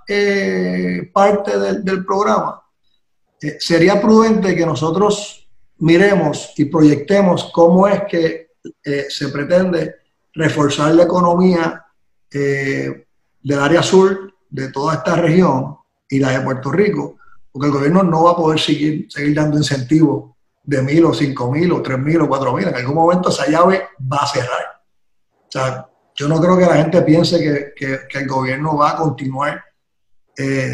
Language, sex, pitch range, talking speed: Spanish, male, 140-180 Hz, 160 wpm